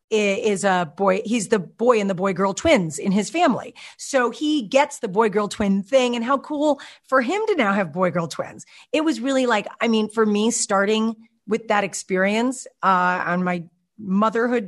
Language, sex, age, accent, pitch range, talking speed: English, female, 40-59, American, 180-235 Hz, 200 wpm